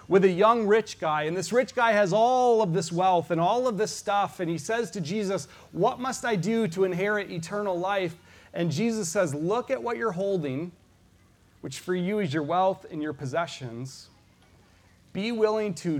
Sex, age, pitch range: male, 30-49, 130-180 Hz